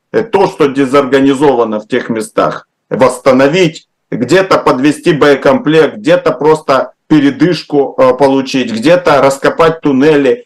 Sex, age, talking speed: male, 50-69, 105 wpm